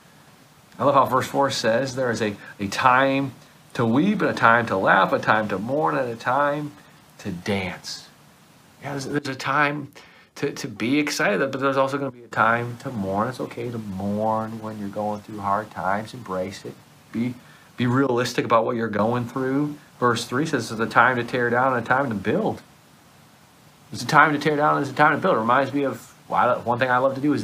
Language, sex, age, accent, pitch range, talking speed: English, male, 40-59, American, 110-140 Hz, 225 wpm